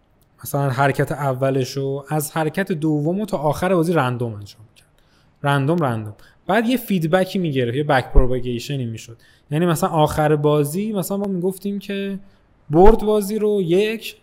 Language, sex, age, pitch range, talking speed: Persian, male, 20-39, 130-180 Hz, 150 wpm